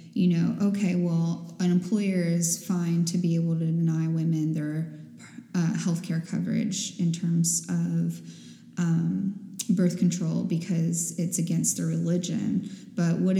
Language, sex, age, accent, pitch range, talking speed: English, female, 10-29, American, 170-205 Hz, 140 wpm